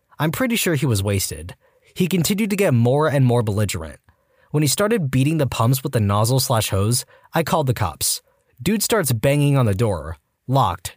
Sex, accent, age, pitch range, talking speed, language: male, American, 20-39, 115-175 Hz, 185 wpm, English